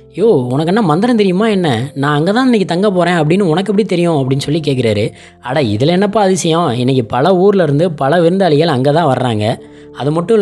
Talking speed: 195 wpm